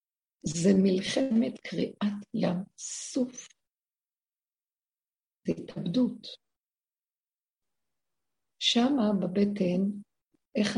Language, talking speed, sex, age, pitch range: Hebrew, 55 wpm, female, 50-69, 185-225 Hz